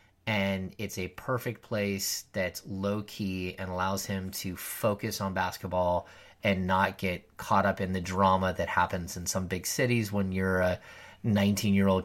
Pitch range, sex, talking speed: 95-110 Hz, male, 160 wpm